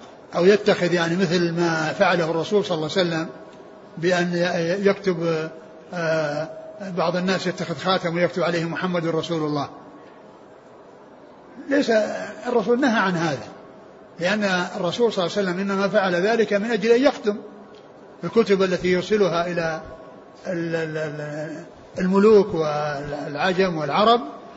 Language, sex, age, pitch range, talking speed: Arabic, male, 60-79, 170-220 Hz, 115 wpm